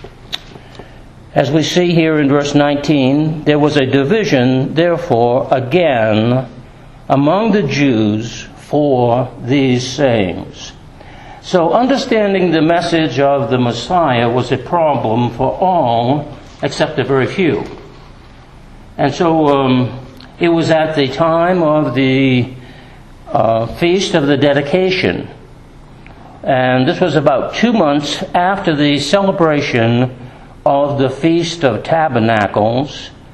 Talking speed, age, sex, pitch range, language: 115 wpm, 60-79, male, 130-155 Hz, English